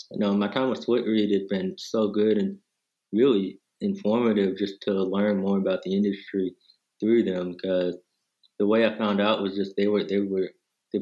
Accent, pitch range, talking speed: American, 90-105 Hz, 195 wpm